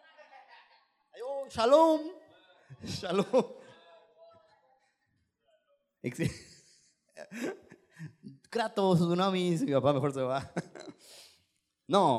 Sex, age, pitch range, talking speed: male, 30-49, 170-260 Hz, 50 wpm